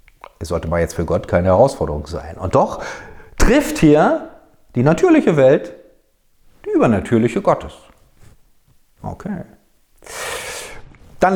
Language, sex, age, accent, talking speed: German, male, 50-69, German, 110 wpm